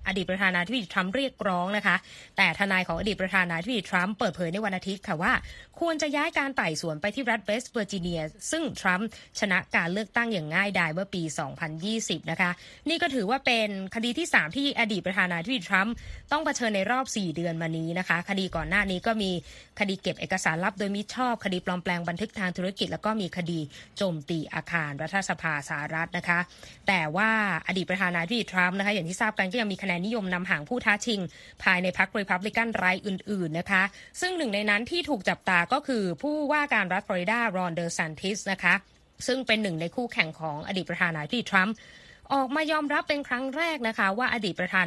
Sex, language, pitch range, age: female, Thai, 180-235 Hz, 20-39